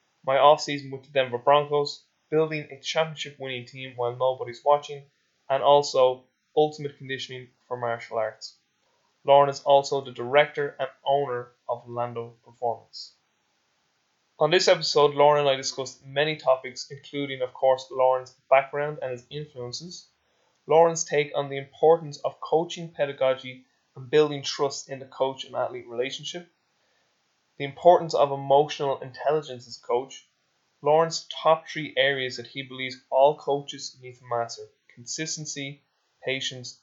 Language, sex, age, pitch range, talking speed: English, male, 20-39, 125-145 Hz, 135 wpm